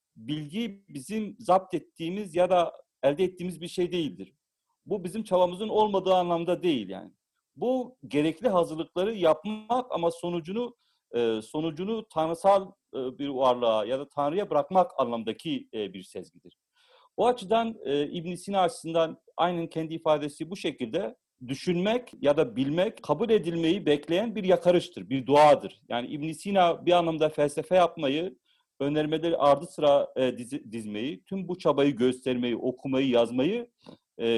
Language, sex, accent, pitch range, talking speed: Turkish, male, native, 140-190 Hz, 135 wpm